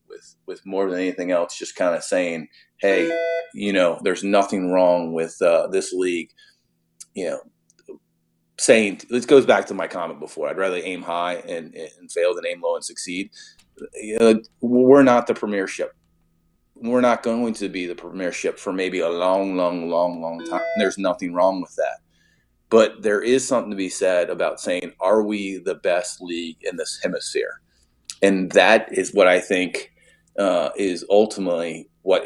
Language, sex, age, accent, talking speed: English, male, 30-49, American, 175 wpm